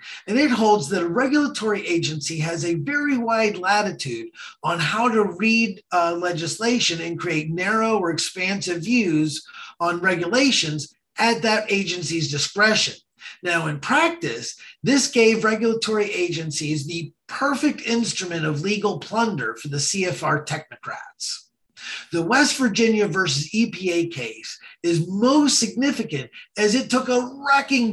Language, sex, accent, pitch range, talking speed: English, male, American, 170-235 Hz, 130 wpm